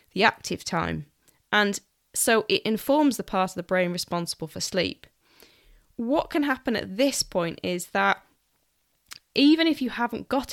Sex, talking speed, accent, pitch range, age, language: female, 160 wpm, British, 185-225 Hz, 10-29, English